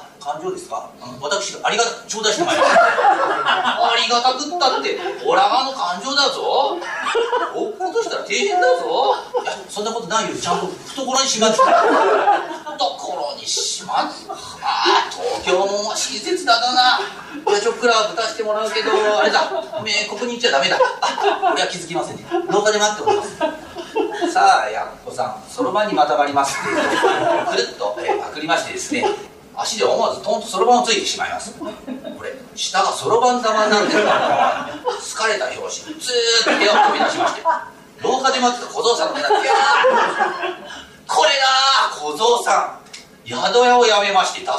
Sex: male